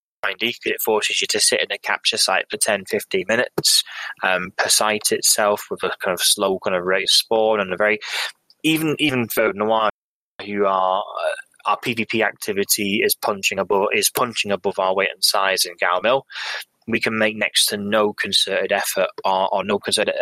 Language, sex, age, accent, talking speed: English, male, 20-39, British, 195 wpm